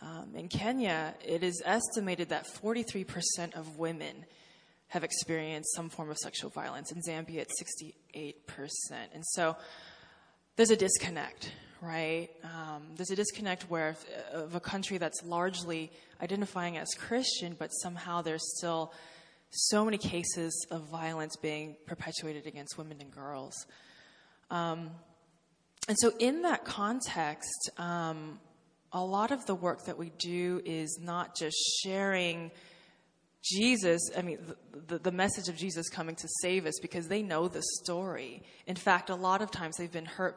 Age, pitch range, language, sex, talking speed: 20-39, 160-185 Hz, English, female, 150 wpm